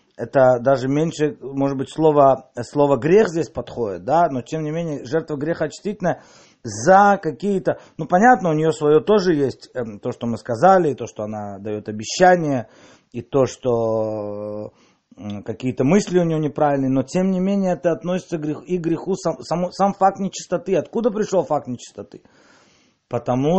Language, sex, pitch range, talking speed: Russian, male, 130-180 Hz, 165 wpm